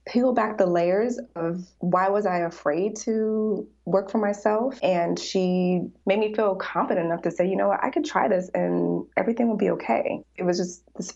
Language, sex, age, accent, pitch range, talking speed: English, female, 20-39, American, 170-205 Hz, 205 wpm